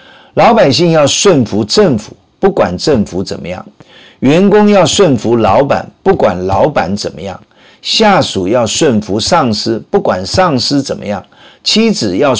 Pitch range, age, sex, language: 115-185 Hz, 50-69, male, Chinese